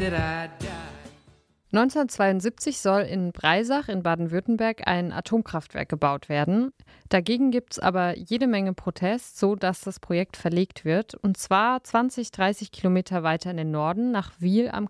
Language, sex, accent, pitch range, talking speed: German, female, German, 180-230 Hz, 135 wpm